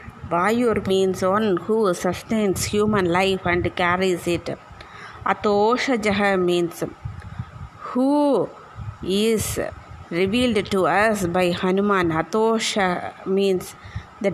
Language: Tamil